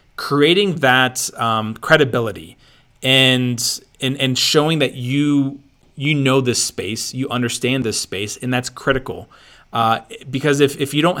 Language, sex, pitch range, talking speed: English, male, 120-140 Hz, 145 wpm